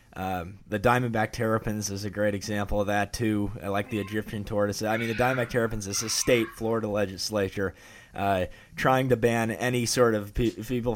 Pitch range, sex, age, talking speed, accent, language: 100-115 Hz, male, 20-39, 190 wpm, American, English